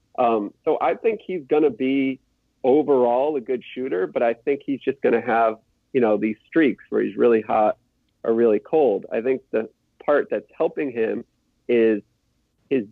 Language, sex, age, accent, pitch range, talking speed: English, male, 40-59, American, 120-155 Hz, 185 wpm